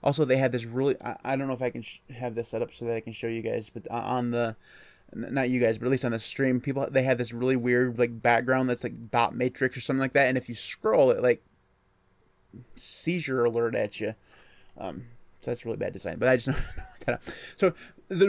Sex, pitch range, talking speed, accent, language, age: male, 120-155 Hz, 245 wpm, American, English, 20-39